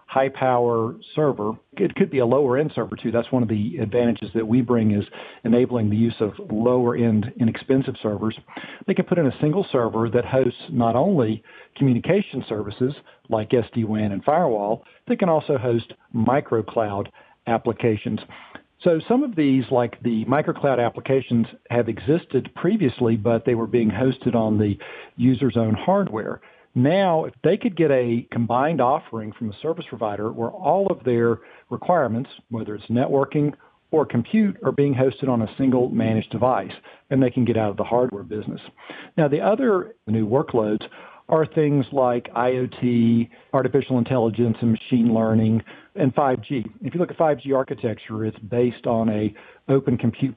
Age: 50-69